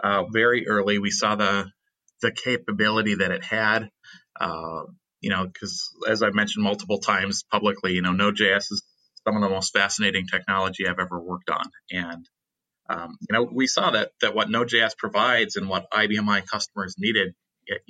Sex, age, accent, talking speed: male, 30-49, American, 175 wpm